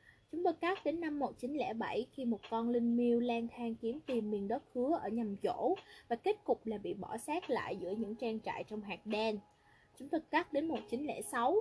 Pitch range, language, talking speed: 215-270 Hz, Vietnamese, 210 wpm